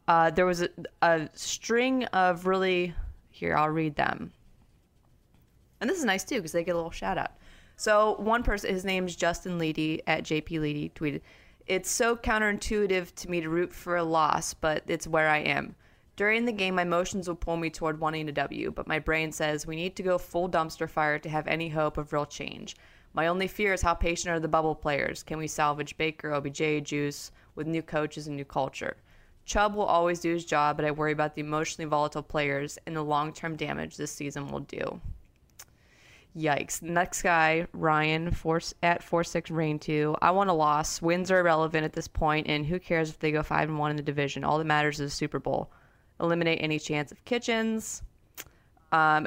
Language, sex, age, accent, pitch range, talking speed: English, female, 20-39, American, 150-180 Hz, 205 wpm